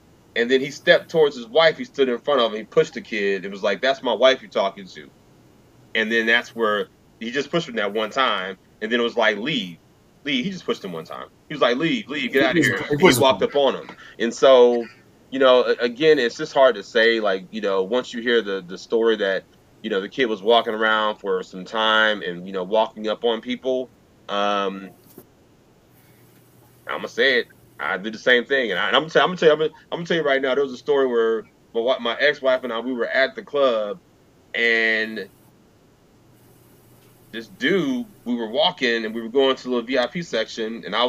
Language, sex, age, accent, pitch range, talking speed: English, male, 30-49, American, 110-145 Hz, 220 wpm